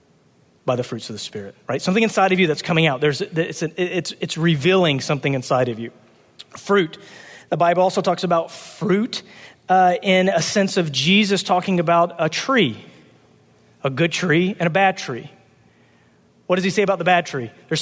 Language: English